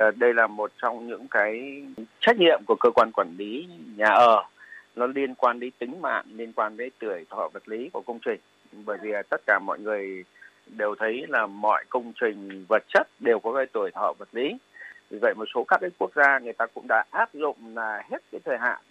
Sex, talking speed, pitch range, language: male, 225 wpm, 110-140 Hz, Vietnamese